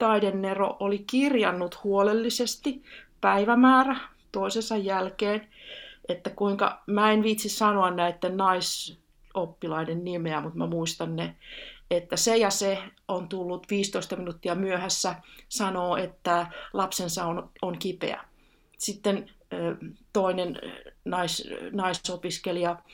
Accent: native